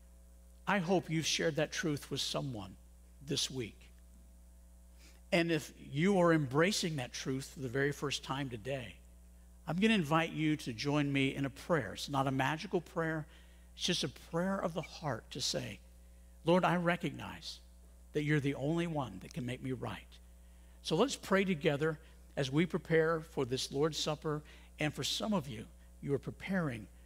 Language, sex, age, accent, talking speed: English, male, 60-79, American, 175 wpm